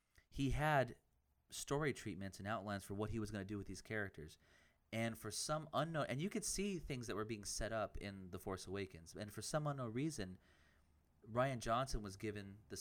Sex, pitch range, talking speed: male, 95-120 Hz, 205 wpm